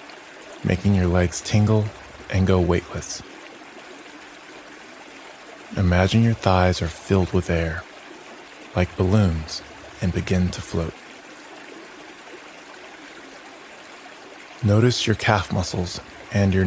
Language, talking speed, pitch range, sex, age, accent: English, 95 wpm, 90-105 Hz, male, 30-49, American